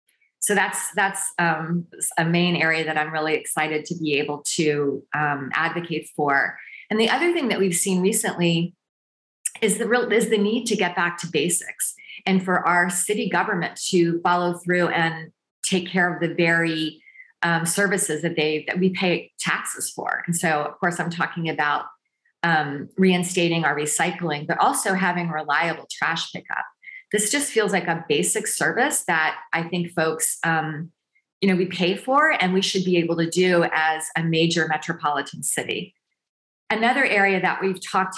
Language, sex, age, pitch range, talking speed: English, female, 30-49, 165-190 Hz, 175 wpm